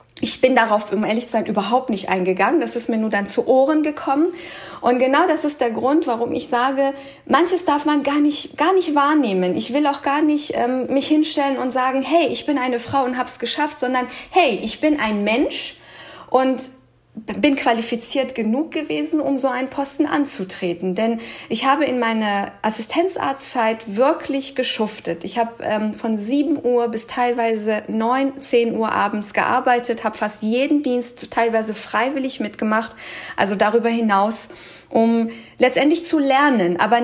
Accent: German